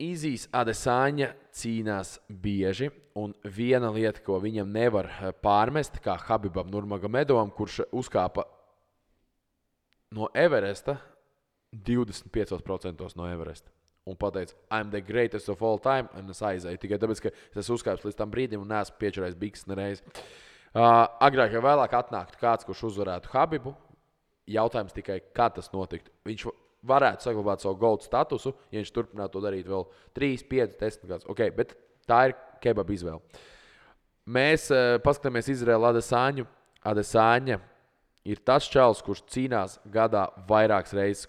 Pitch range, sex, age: 95-120 Hz, male, 20-39